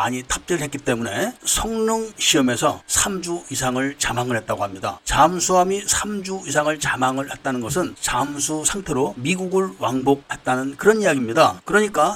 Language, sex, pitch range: Korean, male, 135-185 Hz